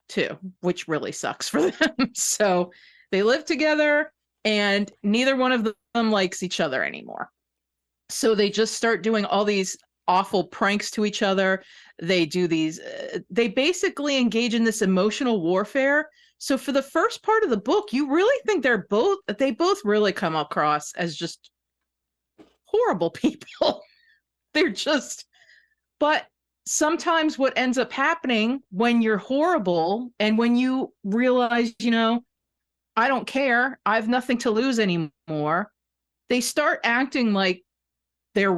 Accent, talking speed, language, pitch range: American, 150 wpm, English, 190-270 Hz